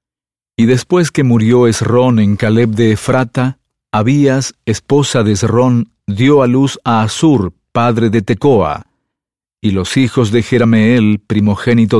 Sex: male